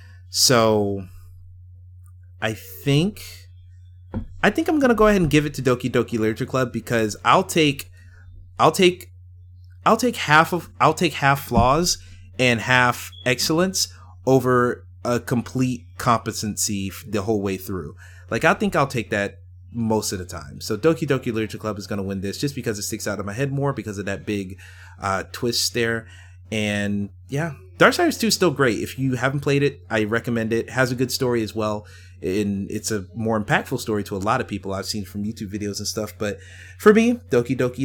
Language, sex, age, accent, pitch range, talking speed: English, male, 30-49, American, 90-125 Hz, 195 wpm